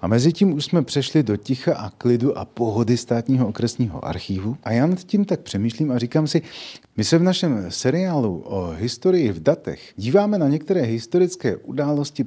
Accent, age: native, 40-59